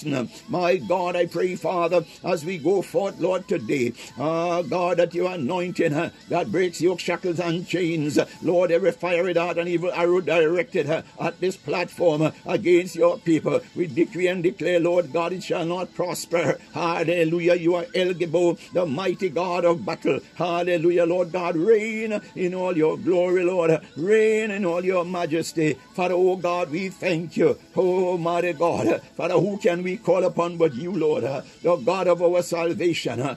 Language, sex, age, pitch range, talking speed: English, male, 60-79, 170-180 Hz, 165 wpm